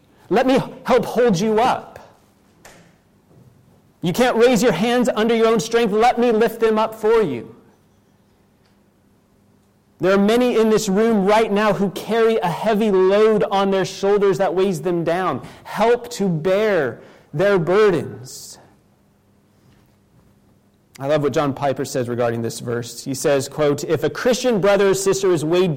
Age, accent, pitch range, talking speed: 30-49, American, 165-230 Hz, 155 wpm